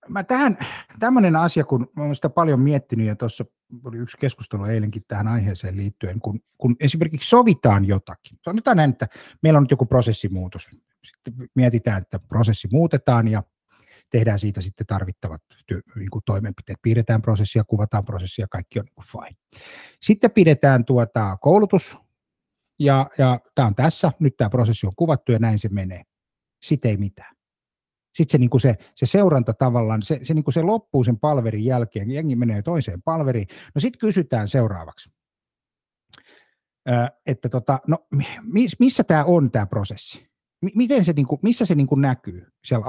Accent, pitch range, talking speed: native, 110-160 Hz, 145 wpm